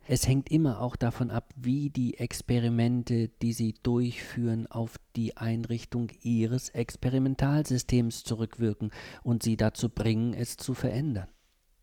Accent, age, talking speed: German, 50-69, 125 wpm